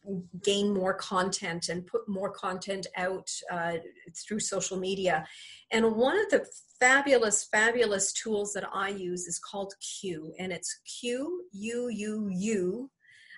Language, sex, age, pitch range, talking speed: English, female, 40-59, 190-235 Hz, 125 wpm